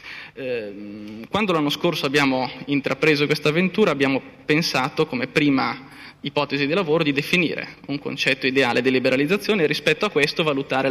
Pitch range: 135-155 Hz